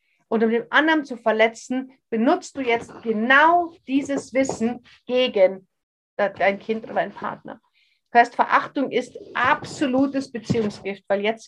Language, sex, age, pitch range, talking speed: German, female, 50-69, 220-275 Hz, 135 wpm